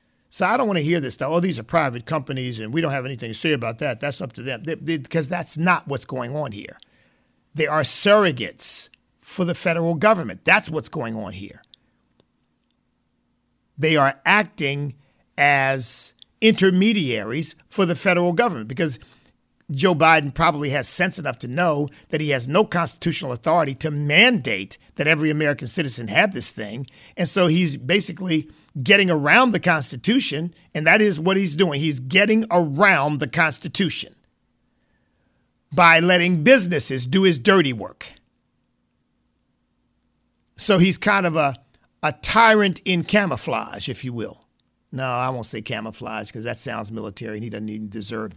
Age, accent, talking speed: 50-69, American, 160 wpm